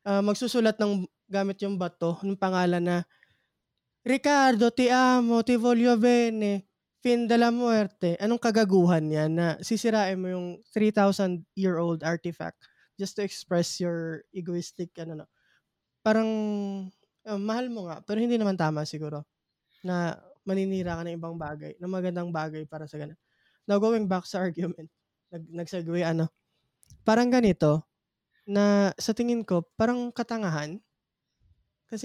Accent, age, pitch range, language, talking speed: native, 20-39, 170-210 Hz, Filipino, 140 wpm